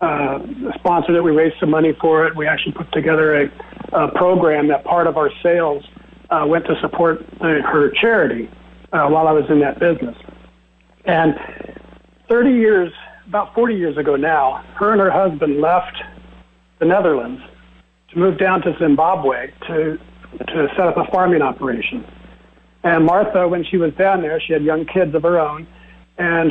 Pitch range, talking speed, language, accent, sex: 155-185 Hz, 175 wpm, English, American, male